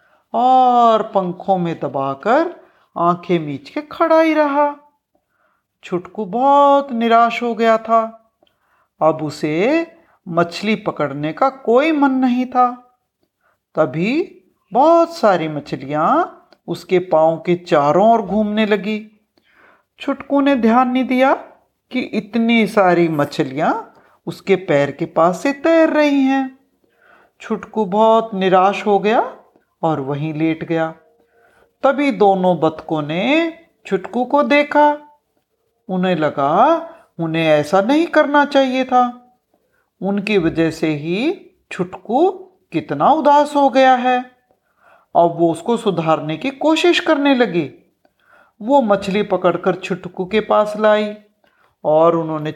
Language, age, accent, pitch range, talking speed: Hindi, 50-69, native, 175-280 Hz, 120 wpm